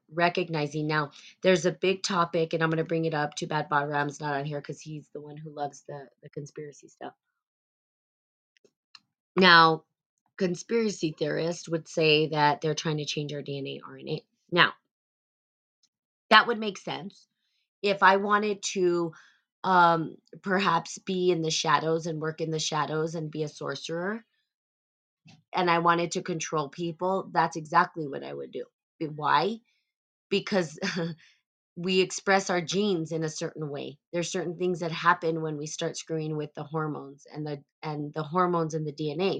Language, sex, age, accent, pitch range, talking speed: English, female, 20-39, American, 155-180 Hz, 165 wpm